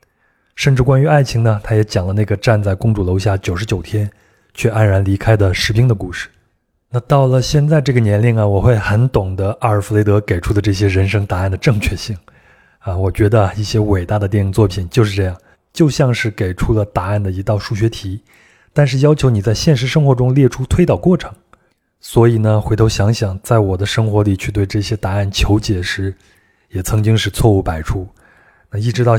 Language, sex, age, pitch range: Chinese, male, 20-39, 95-115 Hz